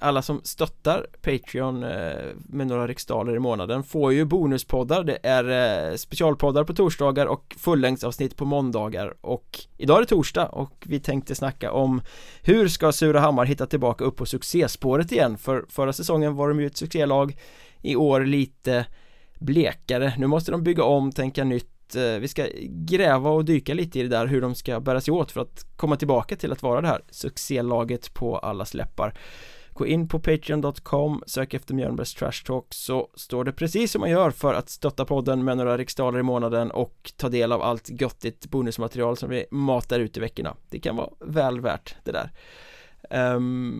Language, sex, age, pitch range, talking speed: Swedish, male, 20-39, 125-150 Hz, 180 wpm